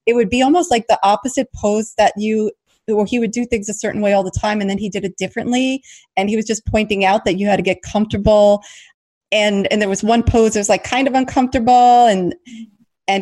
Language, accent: English, American